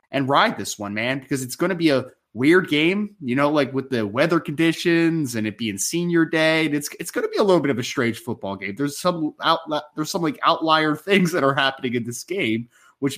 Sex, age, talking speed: male, 30-49, 245 wpm